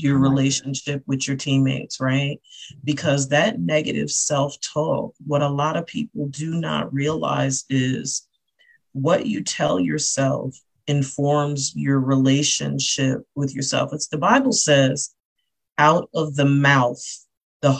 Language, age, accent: English, 40-59, American